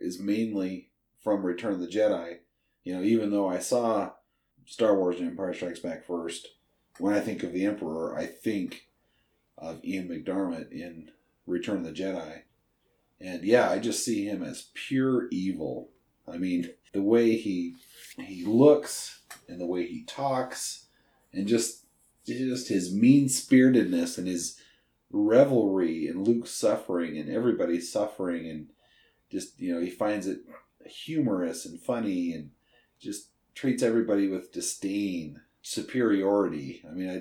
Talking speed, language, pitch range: 145 wpm, English, 90-120 Hz